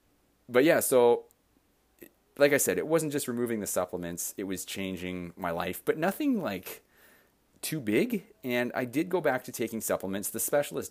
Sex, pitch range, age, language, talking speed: male, 90-120 Hz, 30-49, English, 175 wpm